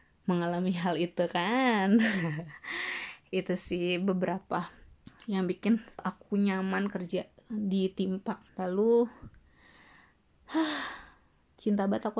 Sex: female